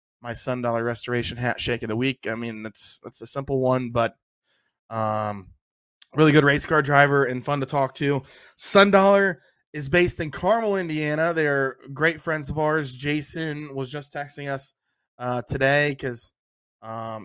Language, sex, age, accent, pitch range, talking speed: English, male, 20-39, American, 120-150 Hz, 165 wpm